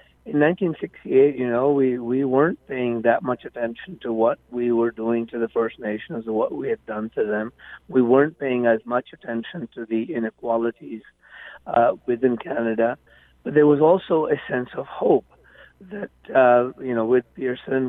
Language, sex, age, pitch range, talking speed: English, male, 50-69, 120-145 Hz, 180 wpm